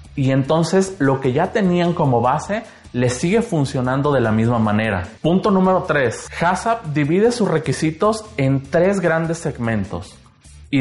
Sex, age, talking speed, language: male, 30-49, 150 wpm, Spanish